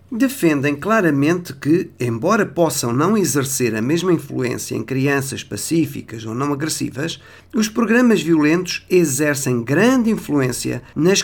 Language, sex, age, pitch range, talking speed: Portuguese, male, 50-69, 125-180 Hz, 125 wpm